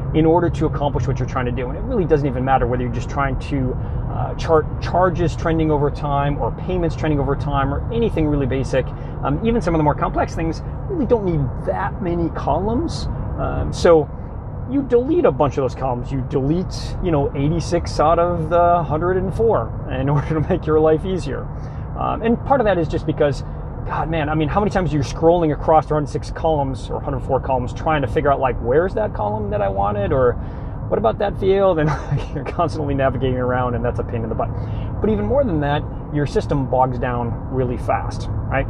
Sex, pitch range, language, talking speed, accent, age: male, 125-155 Hz, English, 215 wpm, American, 30-49